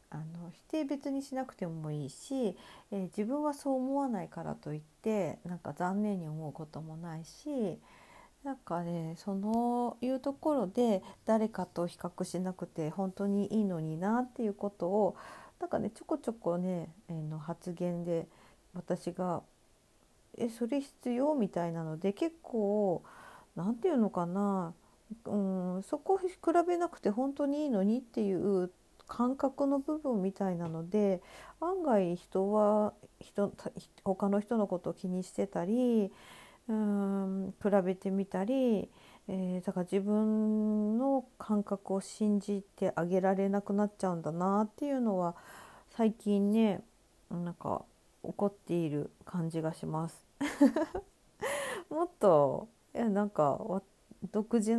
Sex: female